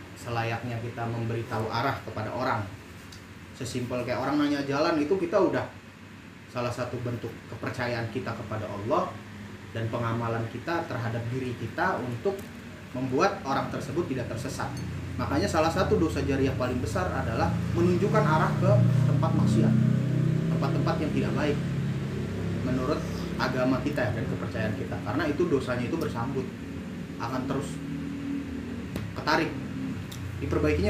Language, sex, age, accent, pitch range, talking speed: Indonesian, male, 30-49, native, 100-140 Hz, 130 wpm